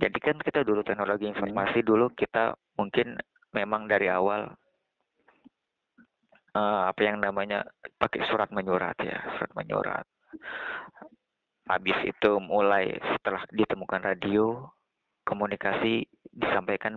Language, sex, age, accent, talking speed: Indonesian, male, 20-39, native, 105 wpm